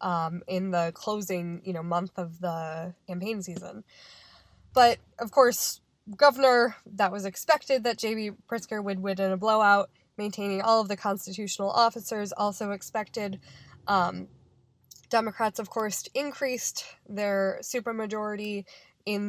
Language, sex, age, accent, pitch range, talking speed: English, female, 10-29, American, 190-230 Hz, 130 wpm